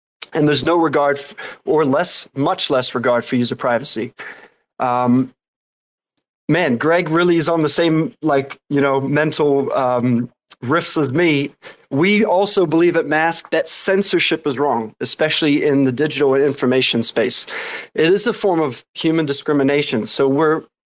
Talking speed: 150 wpm